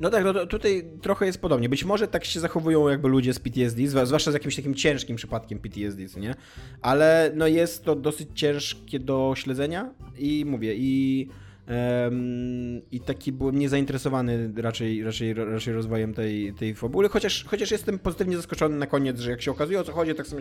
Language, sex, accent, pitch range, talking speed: Polish, male, native, 115-145 Hz, 180 wpm